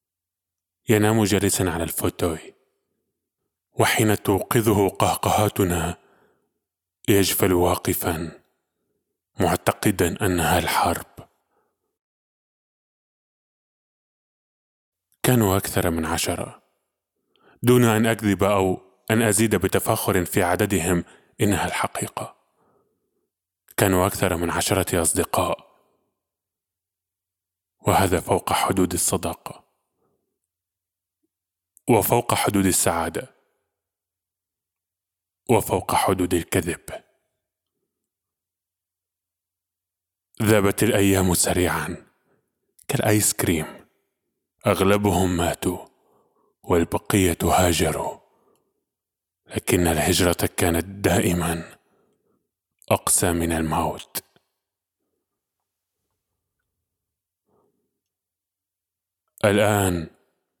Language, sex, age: Arabic, male, 20-39